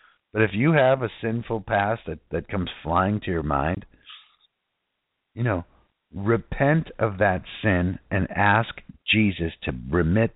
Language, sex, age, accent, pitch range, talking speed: English, male, 60-79, American, 85-110 Hz, 145 wpm